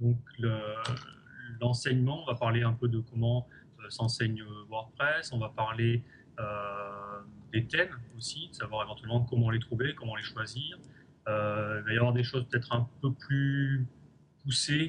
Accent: French